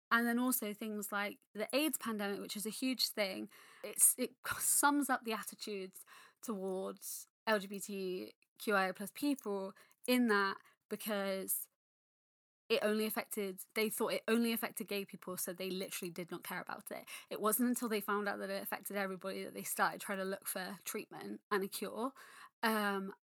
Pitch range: 190-230 Hz